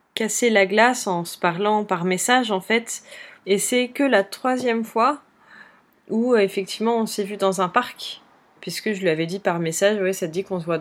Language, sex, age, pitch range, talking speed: French, female, 20-39, 160-205 Hz, 210 wpm